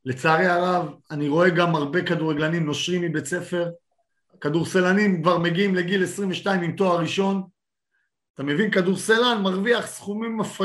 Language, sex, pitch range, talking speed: Hebrew, male, 155-210 Hz, 130 wpm